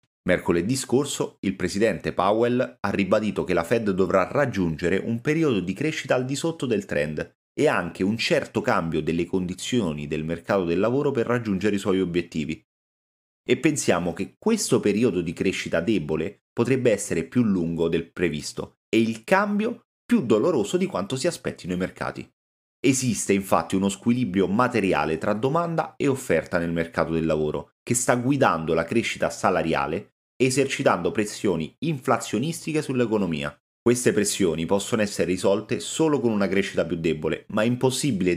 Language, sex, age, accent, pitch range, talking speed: Italian, male, 30-49, native, 90-135 Hz, 155 wpm